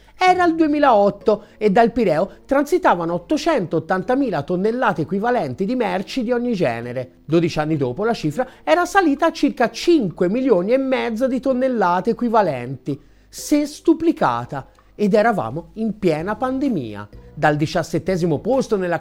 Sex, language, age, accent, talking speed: male, Italian, 30-49, native, 135 wpm